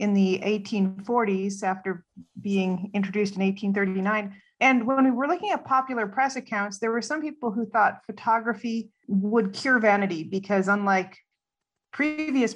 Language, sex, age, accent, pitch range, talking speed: English, female, 40-59, American, 190-230 Hz, 145 wpm